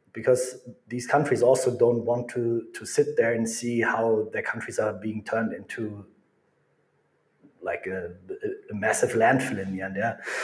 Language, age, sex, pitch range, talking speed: English, 30-49, male, 115-155 Hz, 160 wpm